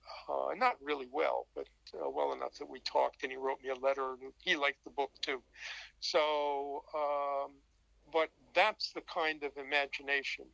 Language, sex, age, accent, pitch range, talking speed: English, male, 50-69, American, 135-165 Hz, 175 wpm